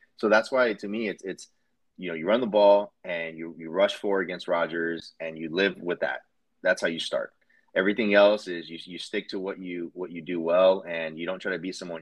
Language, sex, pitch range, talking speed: English, male, 85-100 Hz, 245 wpm